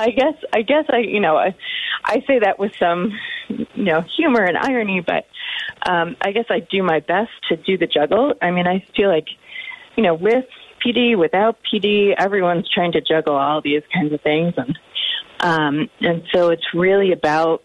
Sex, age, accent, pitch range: female, 30-49, American, 165-225 Hz